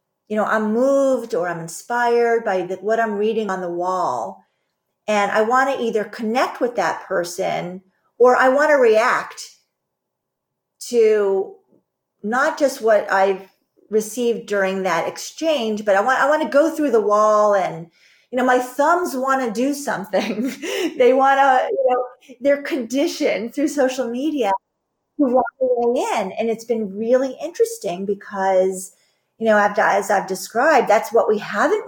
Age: 40-59